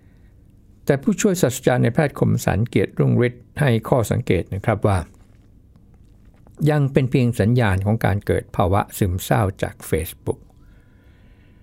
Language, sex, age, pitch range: Thai, male, 60-79, 100-120 Hz